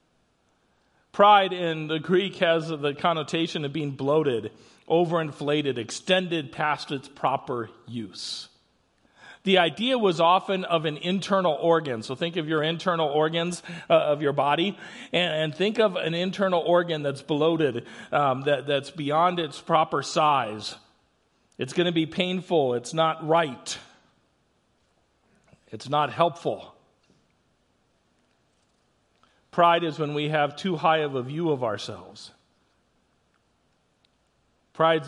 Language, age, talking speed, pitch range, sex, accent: English, 40-59, 125 wpm, 130-170 Hz, male, American